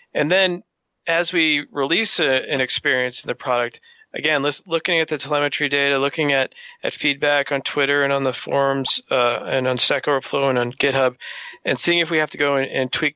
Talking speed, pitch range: 210 wpm, 135-155 Hz